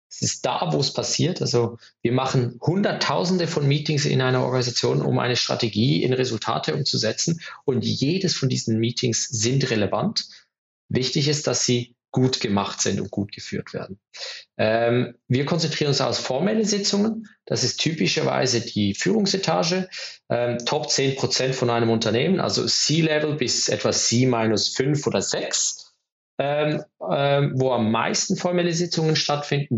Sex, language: male, German